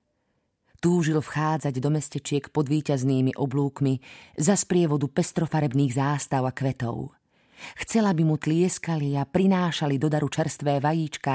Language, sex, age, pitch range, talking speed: Slovak, female, 30-49, 130-155 Hz, 120 wpm